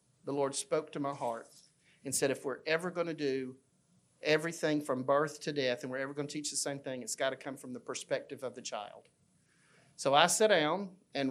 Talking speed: 230 wpm